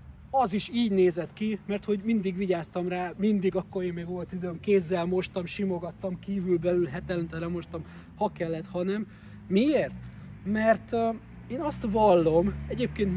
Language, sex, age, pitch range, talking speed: Hungarian, male, 30-49, 170-200 Hz, 150 wpm